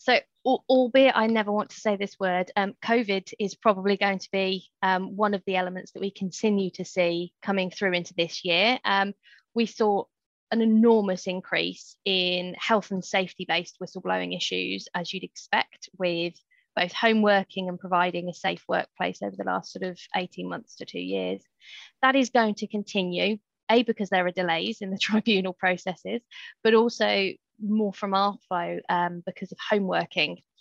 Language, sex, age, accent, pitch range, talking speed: English, female, 20-39, British, 180-215 Hz, 175 wpm